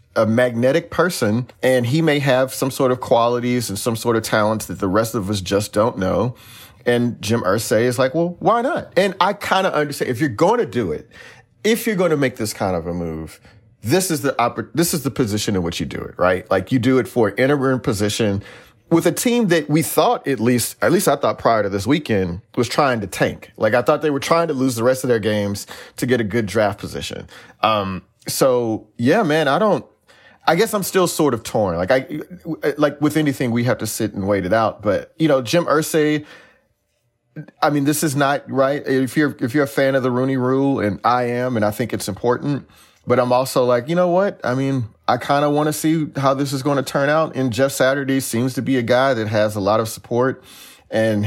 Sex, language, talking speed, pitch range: male, English, 240 wpm, 110-145 Hz